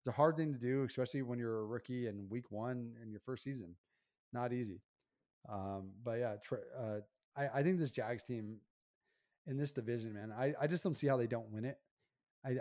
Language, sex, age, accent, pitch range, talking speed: English, male, 30-49, American, 110-130 Hz, 220 wpm